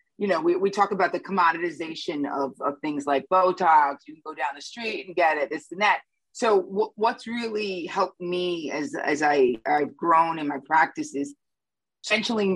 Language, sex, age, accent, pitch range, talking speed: English, female, 30-49, American, 155-230 Hz, 195 wpm